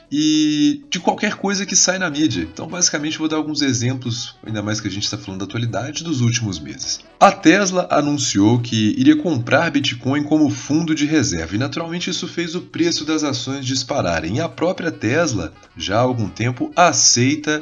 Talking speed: 185 wpm